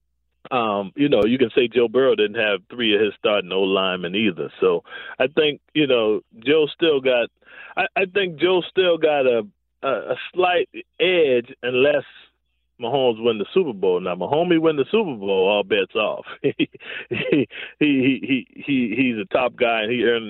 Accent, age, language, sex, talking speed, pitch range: American, 40-59, English, male, 185 wpm, 115-190 Hz